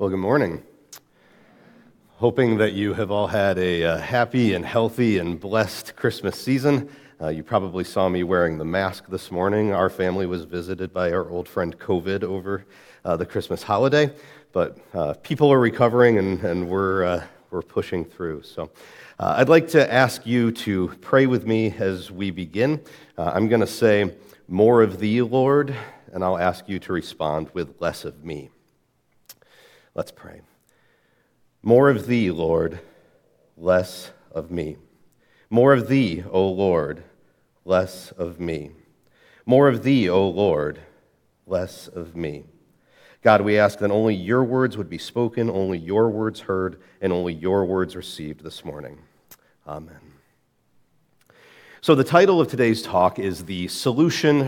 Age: 40-59